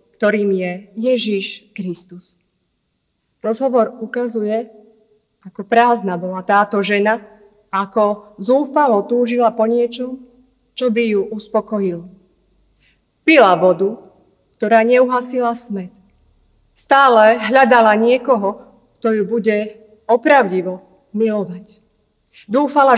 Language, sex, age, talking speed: Slovak, female, 30-49, 90 wpm